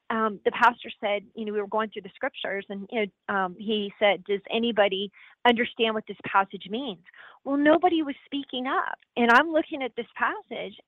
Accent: American